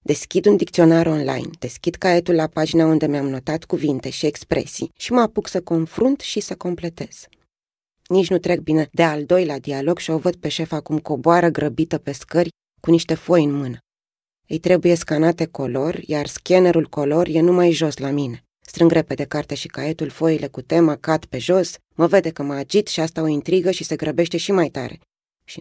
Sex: female